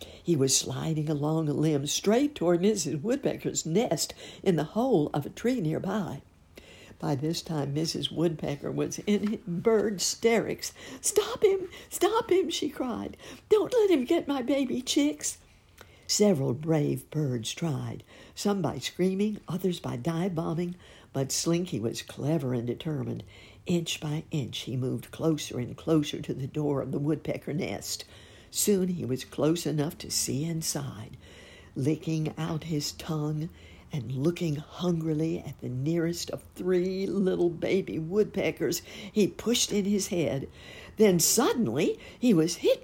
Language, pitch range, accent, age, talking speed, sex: English, 145-205 Hz, American, 60-79, 145 wpm, female